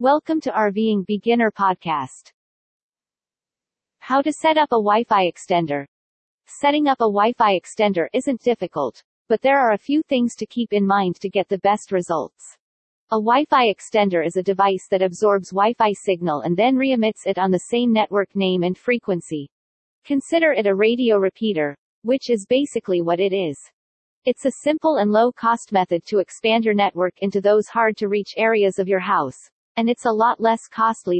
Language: English